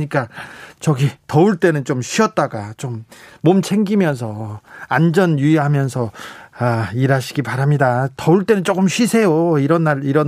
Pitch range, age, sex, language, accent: 140-185 Hz, 40-59, male, Korean, native